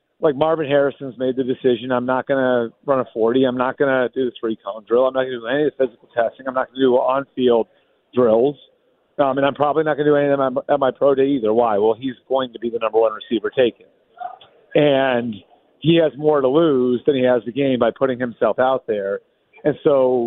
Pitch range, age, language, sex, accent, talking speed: 120-145 Hz, 40-59, English, male, American, 245 wpm